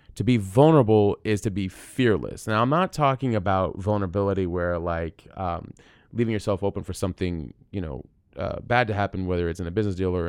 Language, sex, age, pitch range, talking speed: English, male, 20-39, 95-120 Hz, 200 wpm